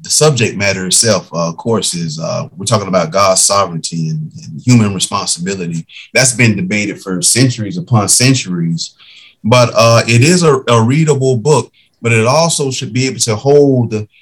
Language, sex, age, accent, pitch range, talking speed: English, male, 30-49, American, 105-140 Hz, 175 wpm